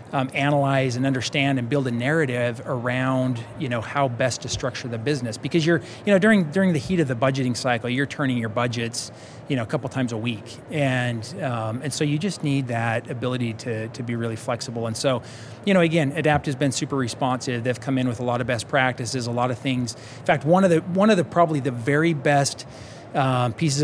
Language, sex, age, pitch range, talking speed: English, male, 30-49, 125-155 Hz, 230 wpm